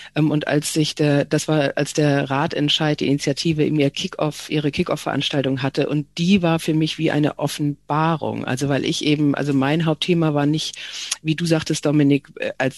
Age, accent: 50-69, German